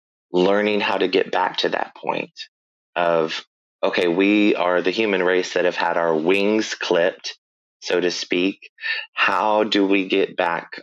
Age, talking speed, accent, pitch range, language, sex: 20-39, 160 wpm, American, 85-100 Hz, English, male